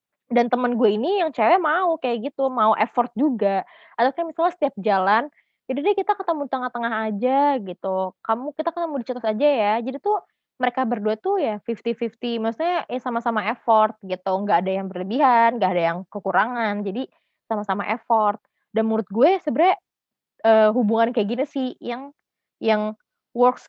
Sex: female